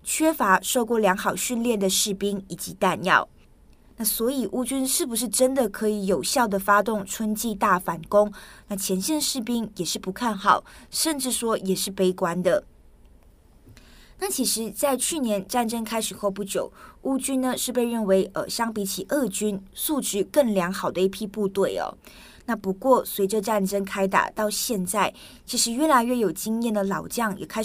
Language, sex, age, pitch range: Chinese, female, 20-39, 195-250 Hz